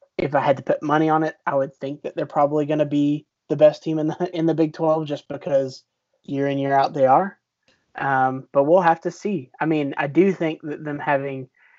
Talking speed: 245 wpm